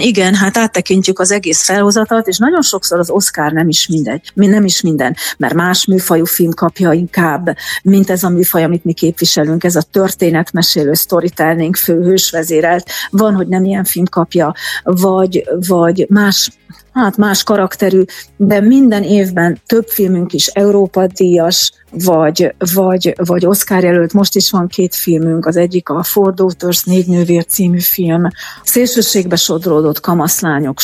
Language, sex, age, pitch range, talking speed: Hungarian, female, 40-59, 170-195 Hz, 150 wpm